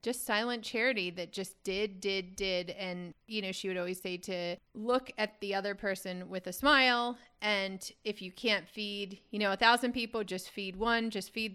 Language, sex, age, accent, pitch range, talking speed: English, female, 30-49, American, 180-215 Hz, 205 wpm